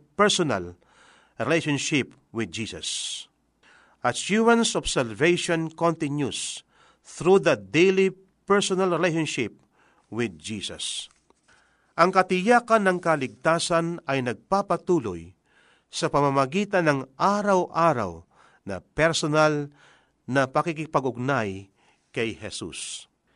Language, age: Filipino, 50-69